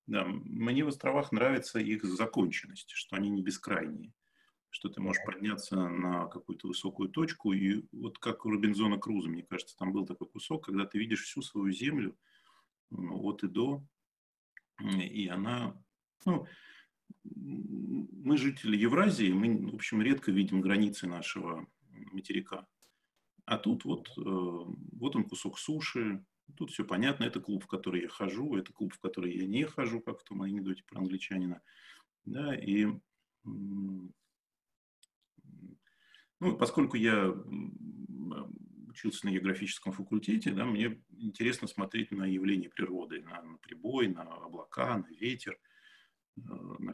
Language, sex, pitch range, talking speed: Russian, male, 95-120 Hz, 135 wpm